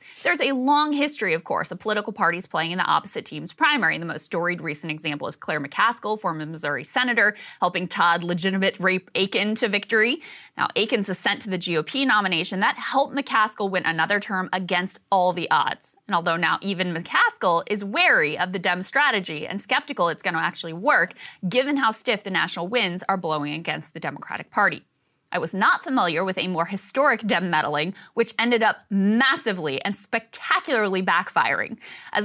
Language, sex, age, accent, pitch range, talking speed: English, female, 20-39, American, 180-255 Hz, 180 wpm